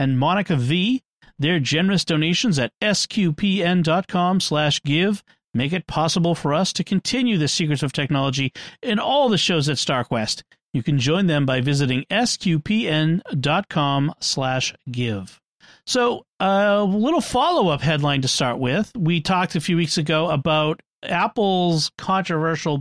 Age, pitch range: 40-59, 140-185 Hz